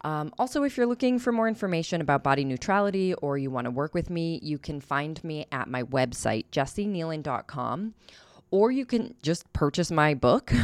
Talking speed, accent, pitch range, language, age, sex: 185 wpm, American, 140-200 Hz, English, 20-39, female